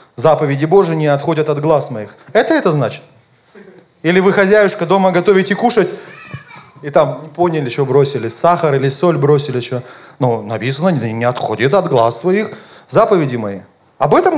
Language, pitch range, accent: Russian, 160-220 Hz, native